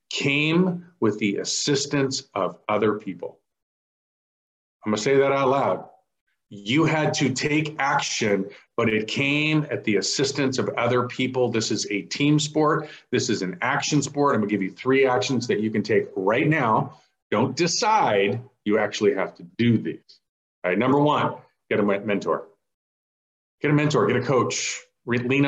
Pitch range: 105-140 Hz